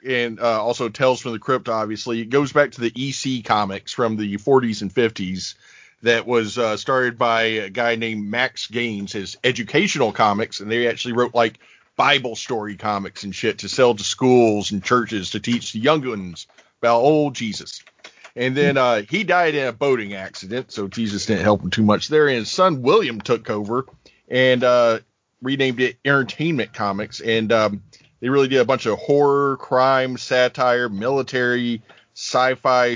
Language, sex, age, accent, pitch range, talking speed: English, male, 40-59, American, 110-130 Hz, 180 wpm